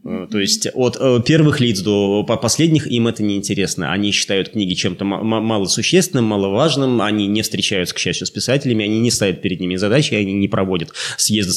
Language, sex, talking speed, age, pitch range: Russian, male, 175 wpm, 20-39, 100-125 Hz